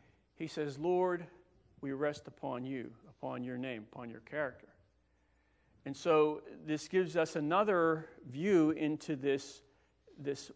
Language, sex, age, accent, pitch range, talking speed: English, male, 50-69, American, 135-165 Hz, 130 wpm